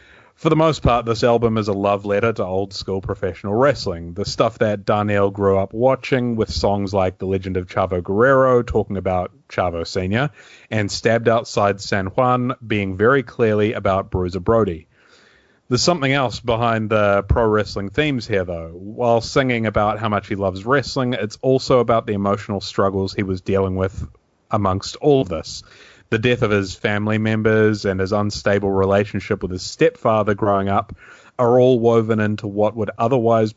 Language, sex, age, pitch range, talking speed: English, male, 30-49, 100-125 Hz, 175 wpm